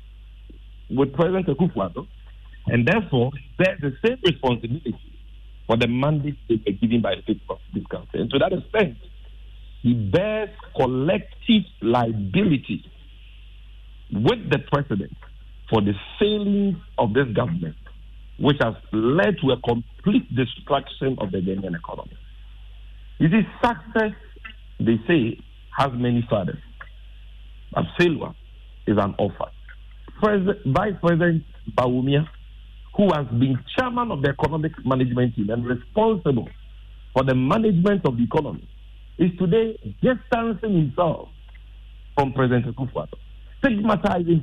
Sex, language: male, English